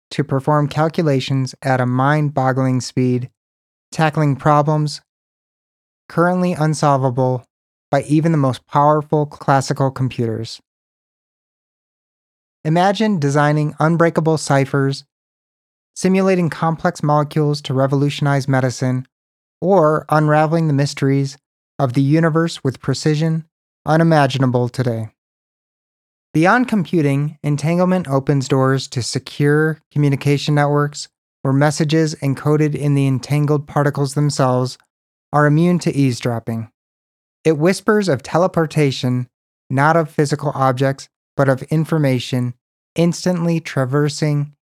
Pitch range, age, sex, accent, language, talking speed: 130-155 Hz, 30-49, male, American, English, 100 wpm